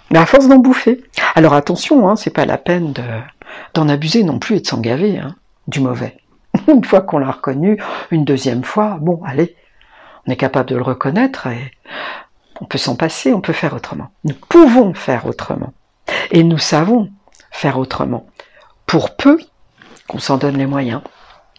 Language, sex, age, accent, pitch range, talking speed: French, female, 60-79, French, 135-200 Hz, 175 wpm